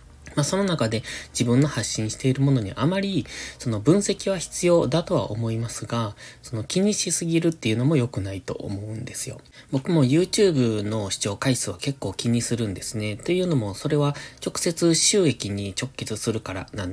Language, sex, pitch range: Japanese, male, 105-150 Hz